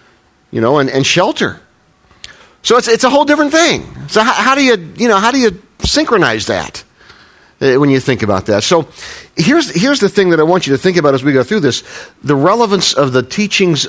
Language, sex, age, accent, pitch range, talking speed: English, male, 50-69, American, 120-155 Hz, 220 wpm